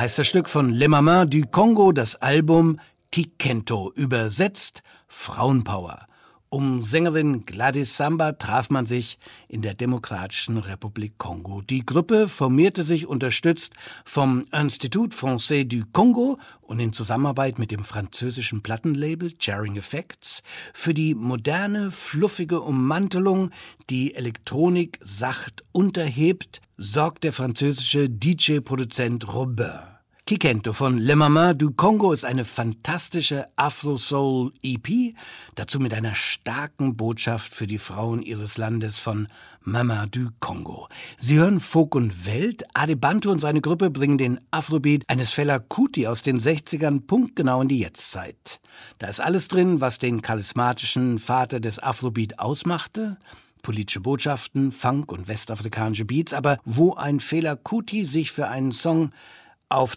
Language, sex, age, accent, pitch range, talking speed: German, male, 60-79, German, 115-155 Hz, 130 wpm